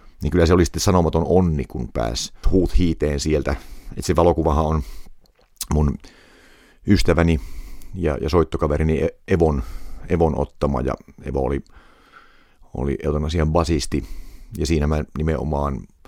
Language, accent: Finnish, native